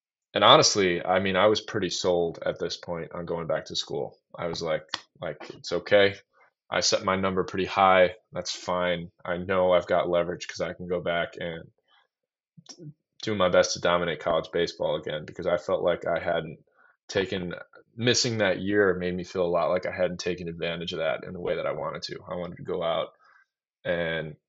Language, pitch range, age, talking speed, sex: English, 90-95 Hz, 20-39, 210 wpm, male